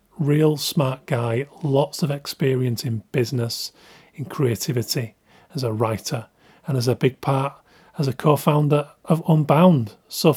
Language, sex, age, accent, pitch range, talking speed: English, male, 30-49, British, 120-150 Hz, 140 wpm